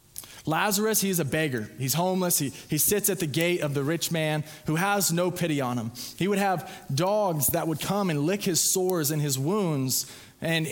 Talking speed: 205 wpm